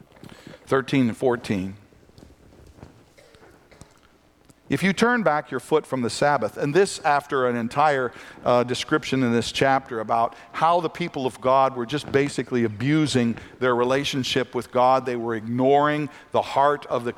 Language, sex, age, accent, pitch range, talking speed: English, male, 50-69, American, 120-155 Hz, 150 wpm